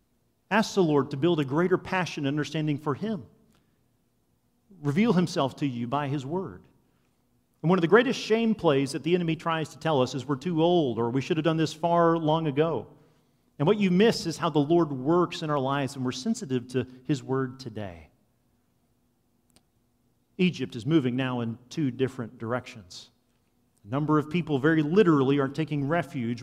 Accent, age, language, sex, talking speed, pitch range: American, 40-59, English, male, 185 wpm, 125-165 Hz